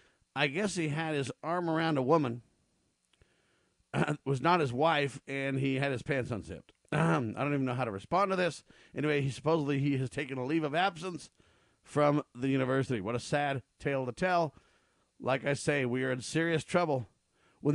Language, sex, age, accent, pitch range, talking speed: English, male, 50-69, American, 130-160 Hz, 195 wpm